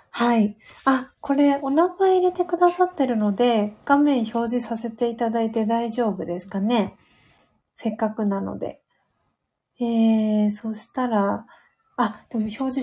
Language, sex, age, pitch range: Japanese, female, 40-59, 215-255 Hz